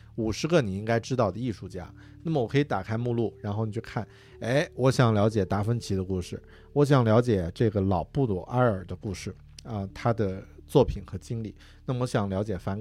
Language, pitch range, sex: Chinese, 95-120 Hz, male